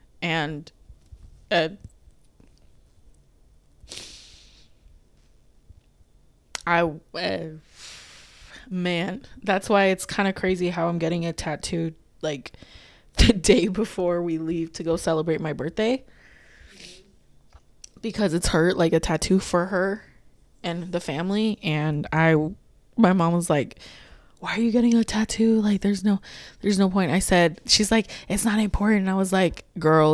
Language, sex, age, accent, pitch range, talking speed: English, female, 20-39, American, 165-210 Hz, 135 wpm